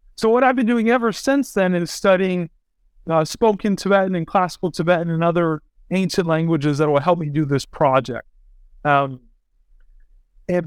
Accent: American